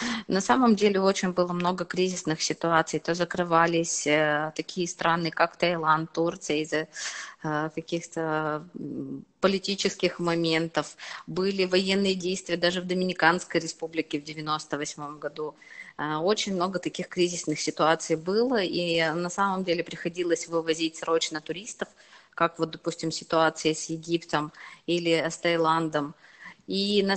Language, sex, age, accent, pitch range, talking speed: Russian, female, 20-39, native, 160-180 Hz, 125 wpm